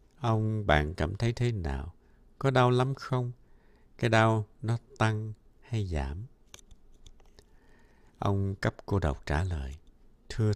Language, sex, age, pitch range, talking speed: Vietnamese, male, 60-79, 75-110 Hz, 130 wpm